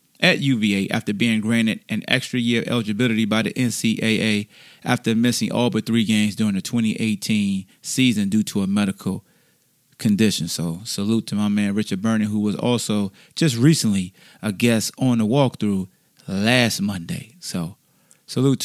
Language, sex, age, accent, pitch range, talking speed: English, male, 30-49, American, 105-125 Hz, 160 wpm